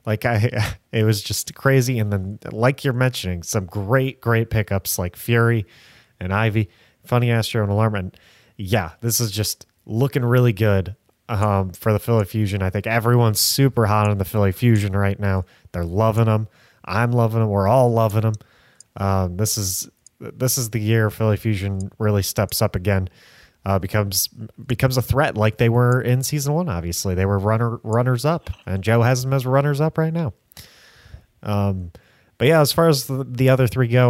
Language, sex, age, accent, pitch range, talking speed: English, male, 30-49, American, 105-130 Hz, 190 wpm